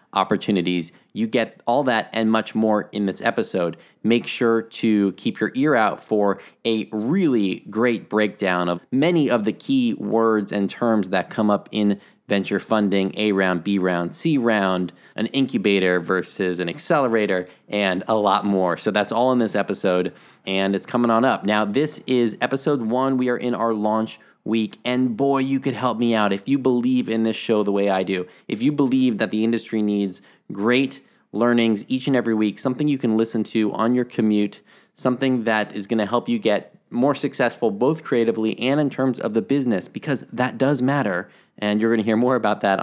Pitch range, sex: 100-125 Hz, male